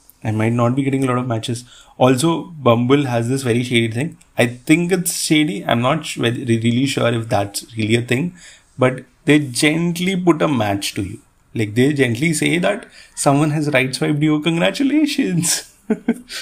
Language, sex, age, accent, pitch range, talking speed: English, male, 30-49, Indian, 120-160 Hz, 180 wpm